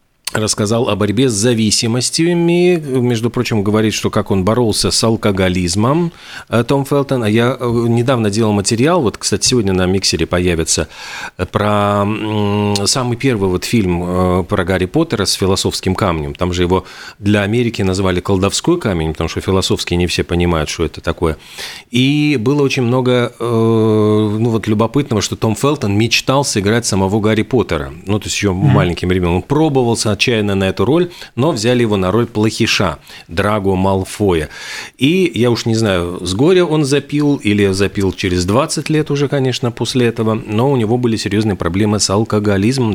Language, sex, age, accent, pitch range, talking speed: Russian, male, 40-59, native, 95-120 Hz, 160 wpm